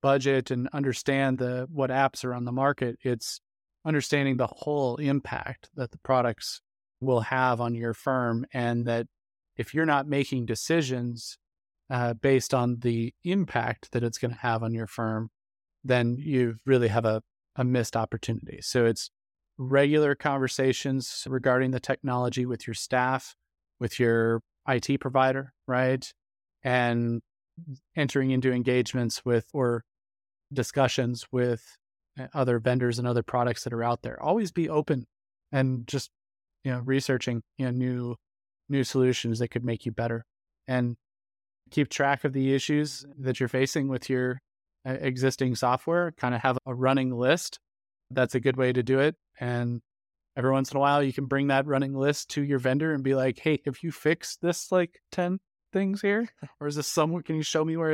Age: 30-49